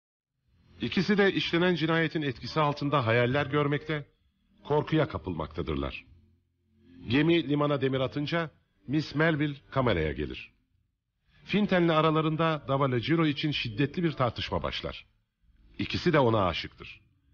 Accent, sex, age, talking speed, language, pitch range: Turkish, male, 50-69, 105 wpm, Dutch, 100-150 Hz